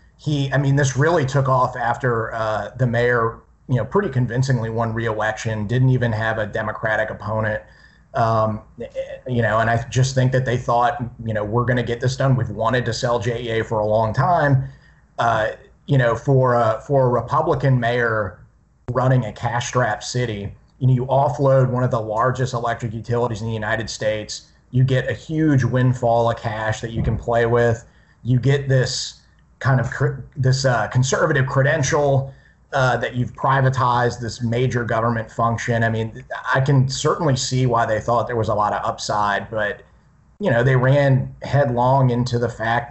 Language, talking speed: English, 180 wpm